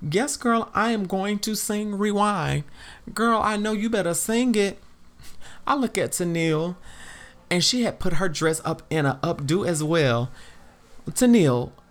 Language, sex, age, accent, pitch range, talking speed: English, male, 30-49, American, 135-195 Hz, 160 wpm